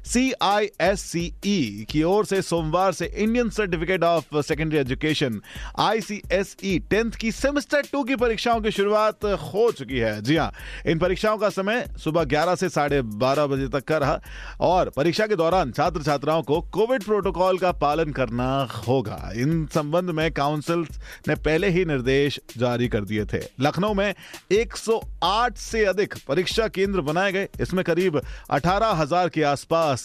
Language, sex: Hindi, male